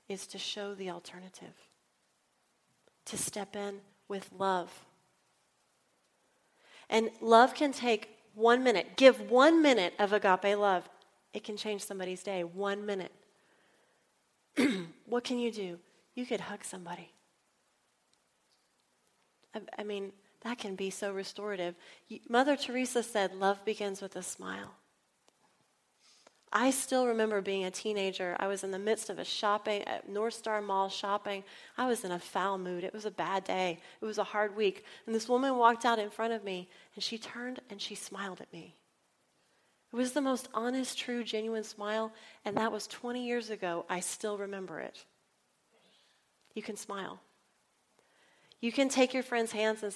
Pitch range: 195-235 Hz